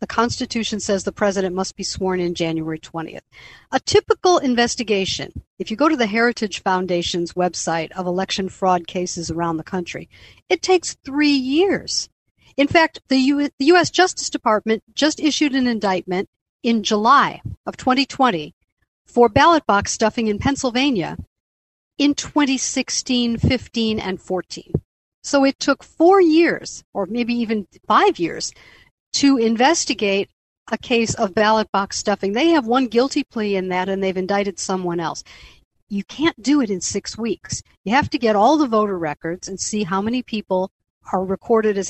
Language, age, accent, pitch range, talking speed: English, 50-69, American, 195-265 Hz, 160 wpm